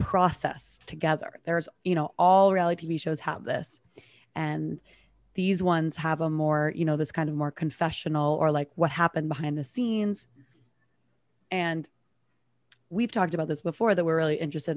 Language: English